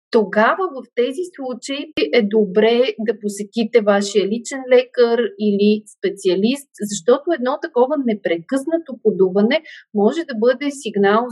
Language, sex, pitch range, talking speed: Bulgarian, female, 200-280 Hz, 115 wpm